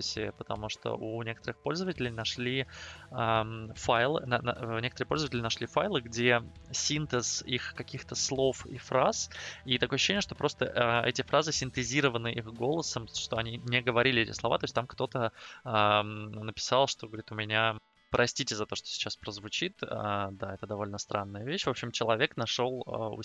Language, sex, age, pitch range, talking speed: Russian, male, 20-39, 110-125 Hz, 150 wpm